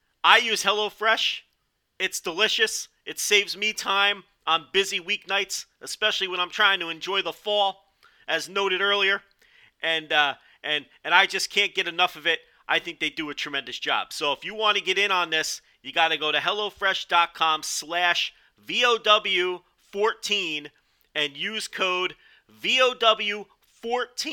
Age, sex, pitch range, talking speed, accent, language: 40-59, male, 175-225 Hz, 150 wpm, American, English